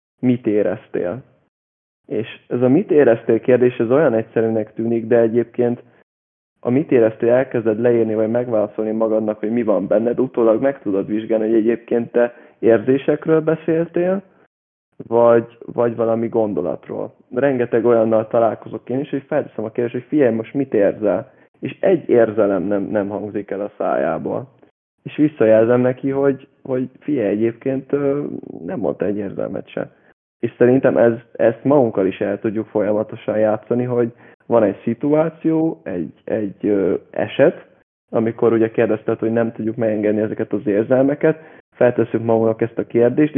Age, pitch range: 20-39, 110-130 Hz